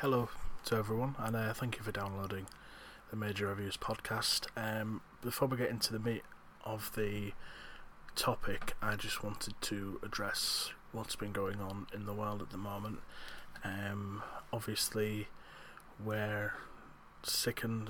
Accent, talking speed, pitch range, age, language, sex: British, 140 wpm, 100-110 Hz, 20-39, English, male